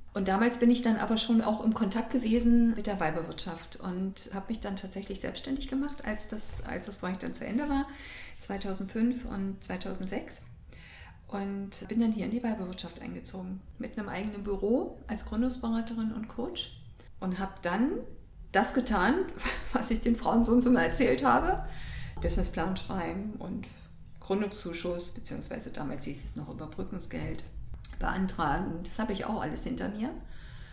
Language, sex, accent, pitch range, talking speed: German, female, German, 185-235 Hz, 160 wpm